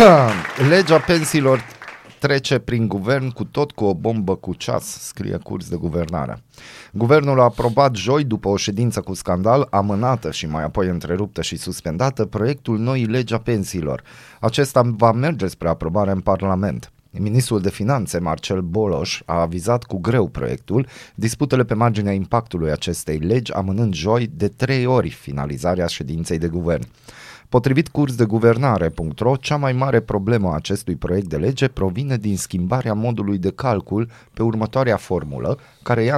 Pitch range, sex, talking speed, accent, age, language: 90-125 Hz, male, 155 wpm, native, 30-49, Romanian